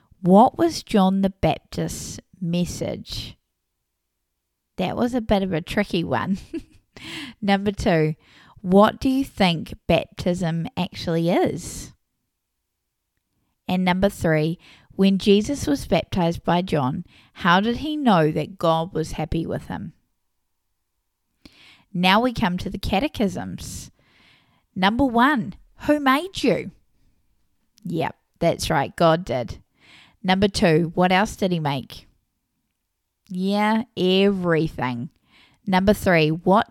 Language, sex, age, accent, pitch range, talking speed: English, female, 20-39, Australian, 155-205 Hz, 115 wpm